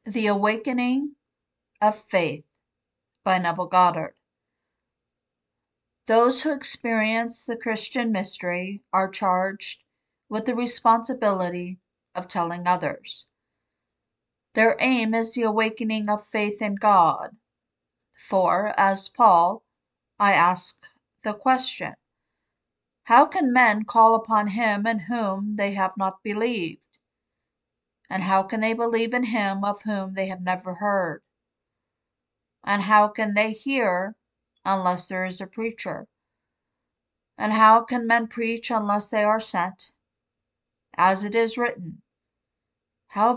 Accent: American